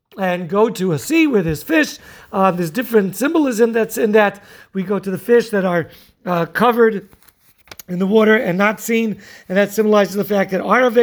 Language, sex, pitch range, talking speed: English, male, 185-230 Hz, 200 wpm